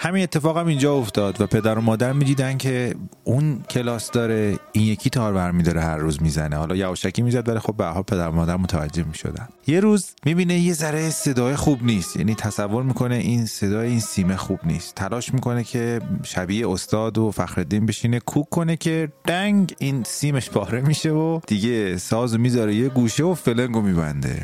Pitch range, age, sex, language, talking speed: 100-135 Hz, 30-49, male, Persian, 180 wpm